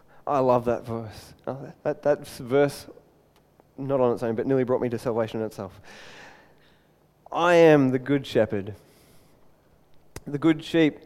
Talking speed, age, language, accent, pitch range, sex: 145 wpm, 20-39, English, Australian, 125-155 Hz, male